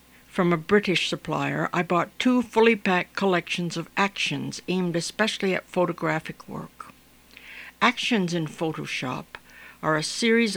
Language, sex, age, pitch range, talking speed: English, female, 60-79, 145-185 Hz, 130 wpm